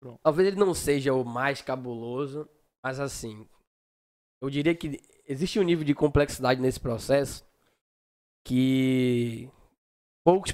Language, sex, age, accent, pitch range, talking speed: Portuguese, male, 10-29, Brazilian, 125-150 Hz, 120 wpm